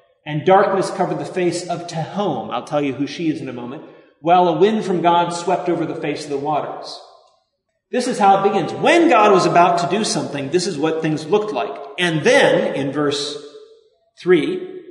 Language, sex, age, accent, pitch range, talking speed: English, male, 30-49, American, 160-240 Hz, 205 wpm